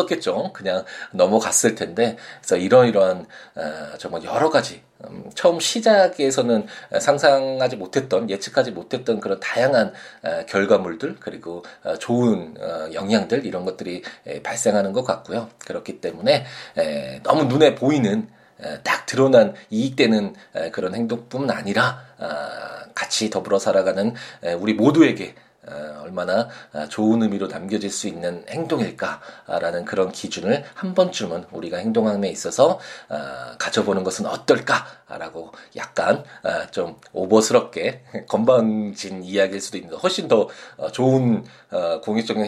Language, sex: Korean, male